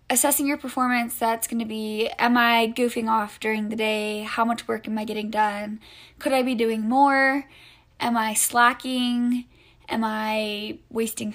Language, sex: English, female